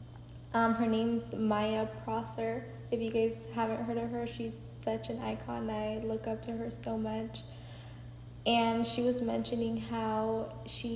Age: 10-29